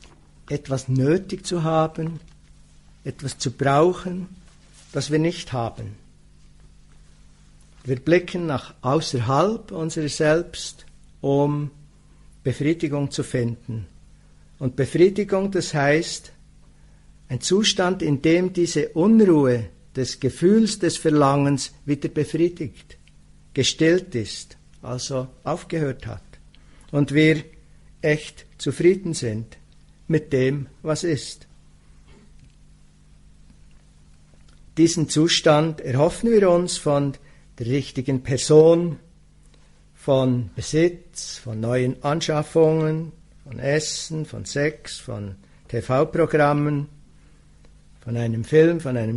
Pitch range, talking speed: 115-160 Hz, 95 wpm